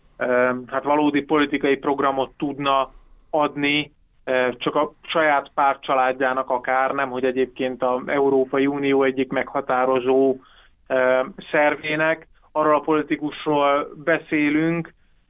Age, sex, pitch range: 30-49, male, 130-150 Hz